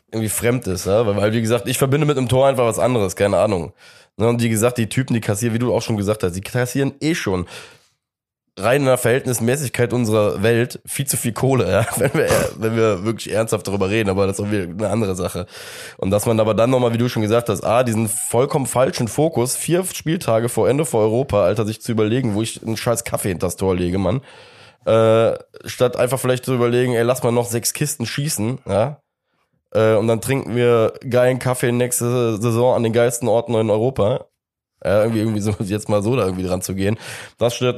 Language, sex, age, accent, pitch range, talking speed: German, male, 10-29, German, 105-125 Hz, 220 wpm